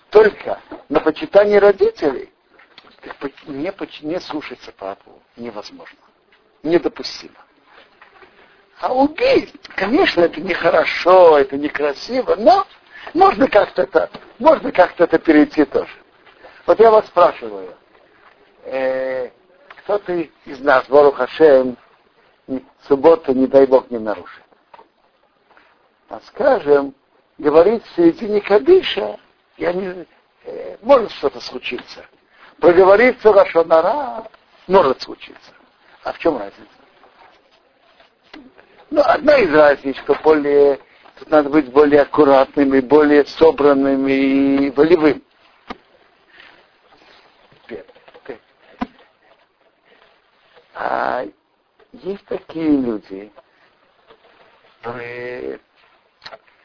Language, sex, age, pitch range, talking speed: Russian, male, 50-69, 135-220 Hz, 90 wpm